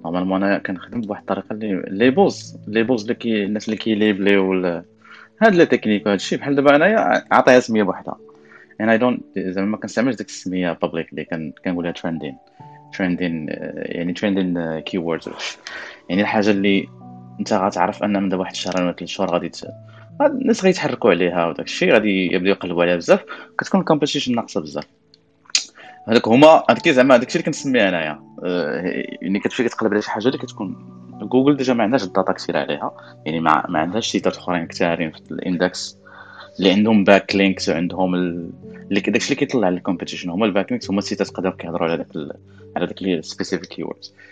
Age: 20-39